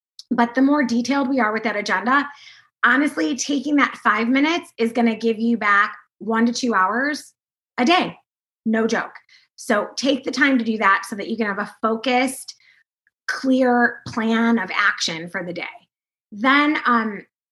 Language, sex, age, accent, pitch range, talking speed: English, female, 20-39, American, 215-275 Hz, 175 wpm